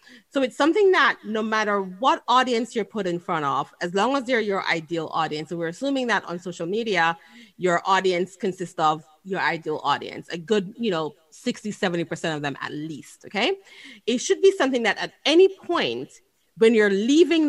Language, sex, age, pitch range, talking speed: English, female, 30-49, 175-250 Hz, 190 wpm